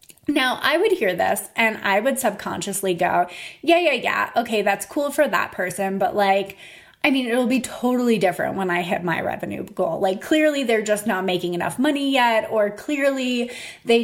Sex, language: female, English